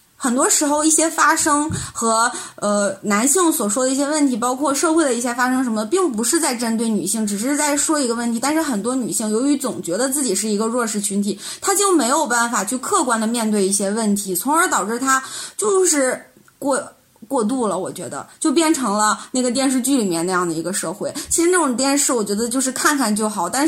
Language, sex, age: Chinese, female, 20-39